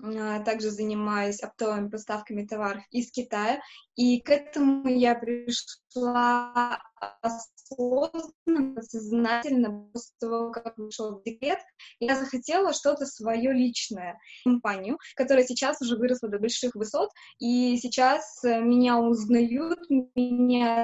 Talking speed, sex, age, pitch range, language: 105 wpm, female, 20-39, 225-260 Hz, Russian